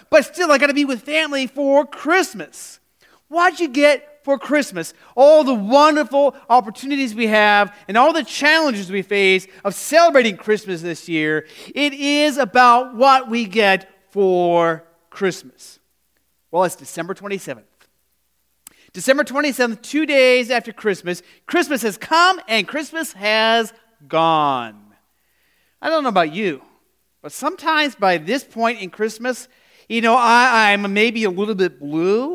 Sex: male